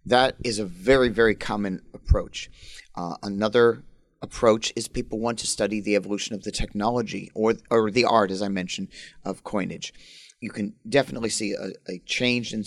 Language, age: English, 40-59